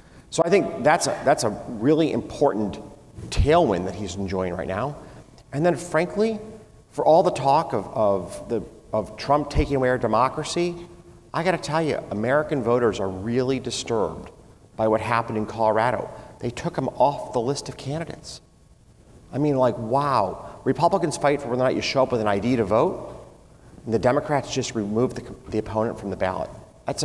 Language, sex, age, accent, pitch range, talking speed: English, male, 40-59, American, 110-150 Hz, 185 wpm